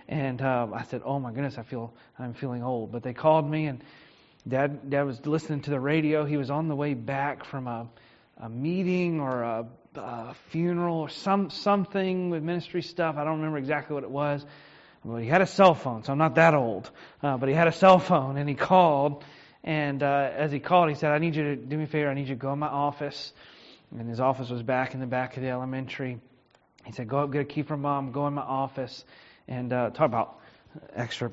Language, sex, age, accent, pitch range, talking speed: English, male, 30-49, American, 130-155 Hz, 240 wpm